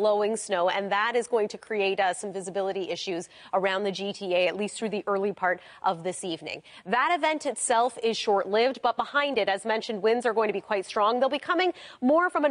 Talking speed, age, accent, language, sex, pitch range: 225 wpm, 30-49, American, English, female, 205-270 Hz